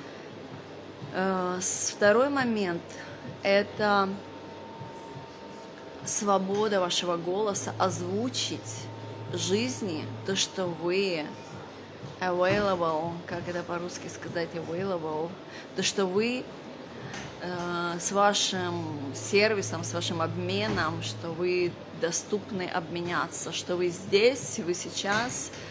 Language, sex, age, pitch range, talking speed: Russian, female, 30-49, 170-200 Hz, 80 wpm